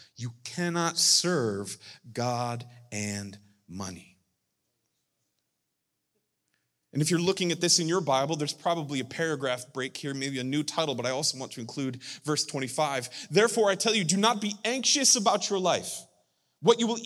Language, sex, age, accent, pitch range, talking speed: English, male, 30-49, American, 125-190 Hz, 165 wpm